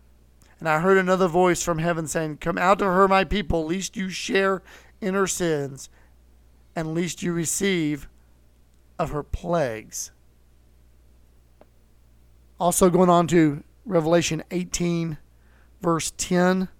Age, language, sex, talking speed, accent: 40-59, English, male, 120 wpm, American